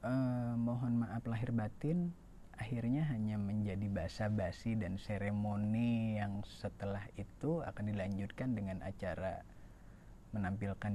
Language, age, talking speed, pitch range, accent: Indonesian, 20-39, 110 wpm, 95-105 Hz, native